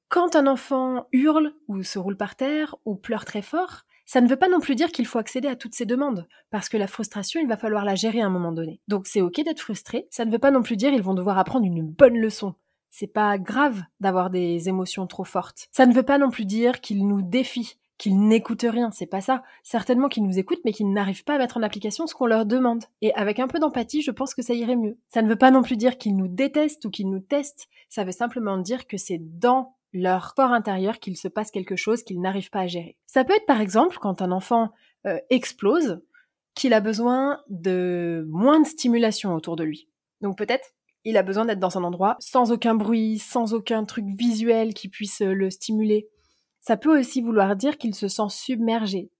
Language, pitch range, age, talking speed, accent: French, 195-255 Hz, 20-39, 235 wpm, French